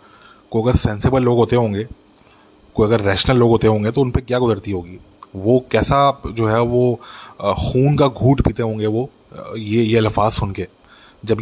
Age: 20-39